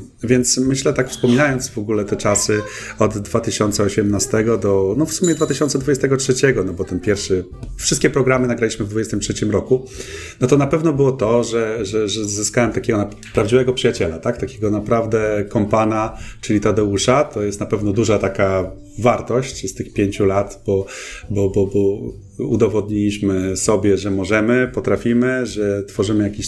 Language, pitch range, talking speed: Polish, 100-120 Hz, 145 wpm